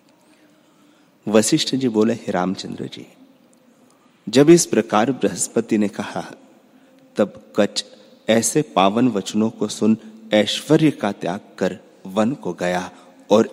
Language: Hindi